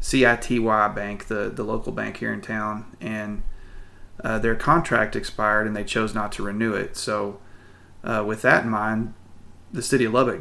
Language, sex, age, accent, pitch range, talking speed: English, male, 30-49, American, 100-120 Hz, 180 wpm